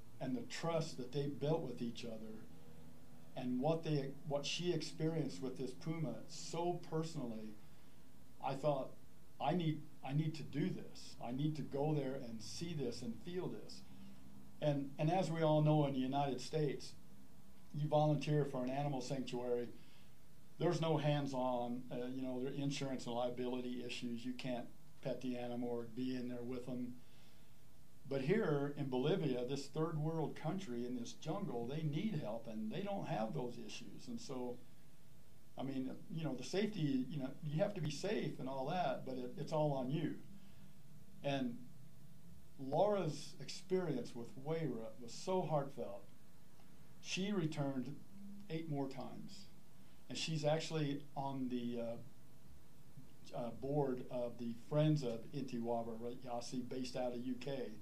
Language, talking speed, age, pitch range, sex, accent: English, 160 wpm, 50-69, 125-155 Hz, male, American